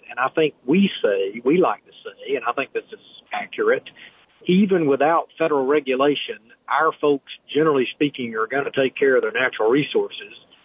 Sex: male